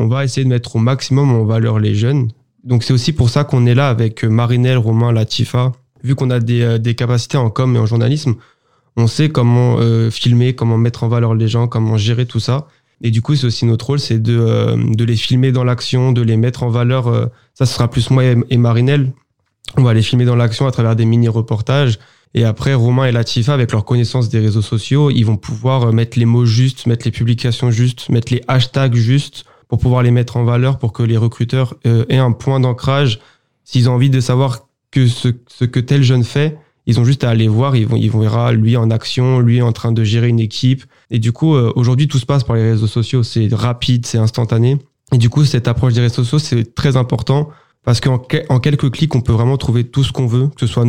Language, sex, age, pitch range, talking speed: French, male, 20-39, 115-130 Hz, 240 wpm